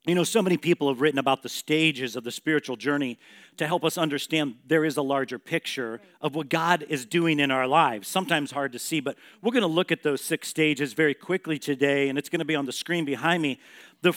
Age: 50-69